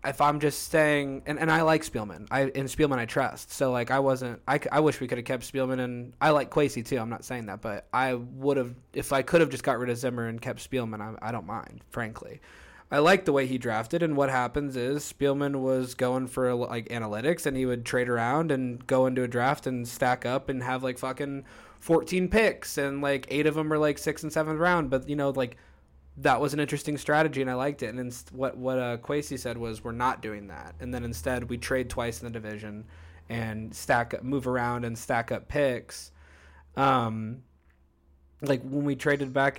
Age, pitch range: 20-39, 120-140 Hz